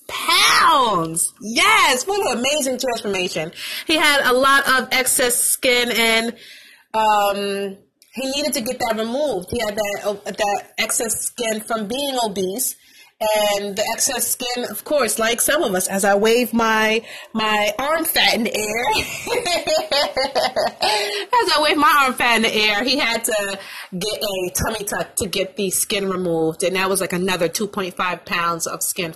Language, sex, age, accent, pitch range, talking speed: English, female, 30-49, American, 210-295 Hz, 170 wpm